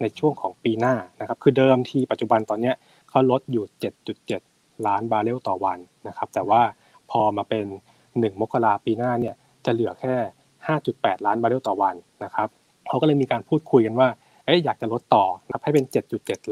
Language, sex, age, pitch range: Thai, male, 20-39, 110-135 Hz